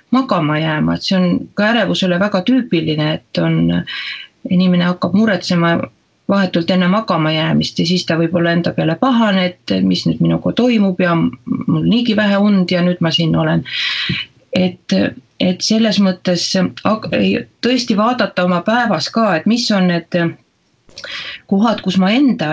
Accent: Finnish